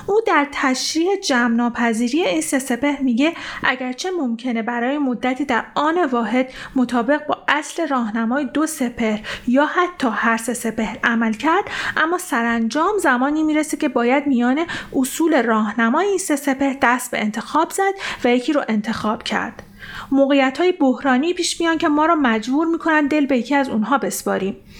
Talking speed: 150 wpm